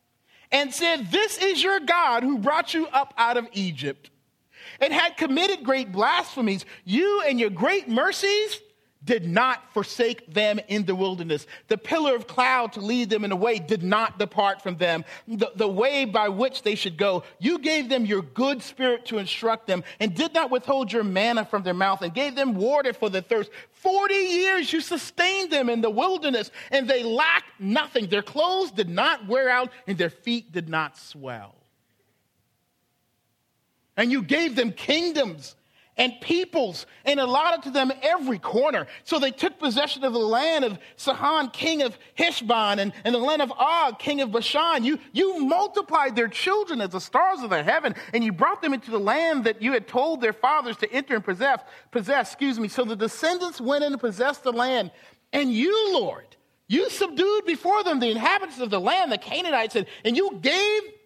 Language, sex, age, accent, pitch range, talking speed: English, male, 40-59, American, 215-315 Hz, 190 wpm